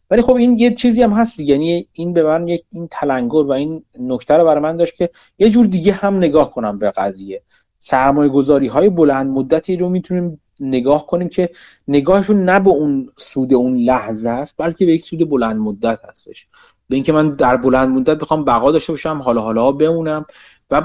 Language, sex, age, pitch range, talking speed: Persian, male, 30-49, 125-170 Hz, 195 wpm